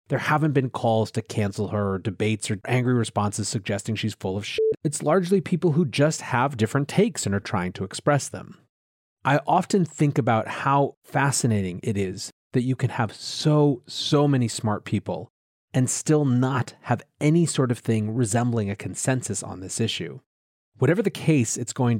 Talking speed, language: 185 wpm, English